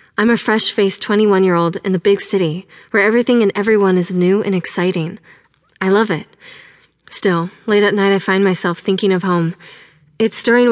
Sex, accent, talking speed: female, American, 175 wpm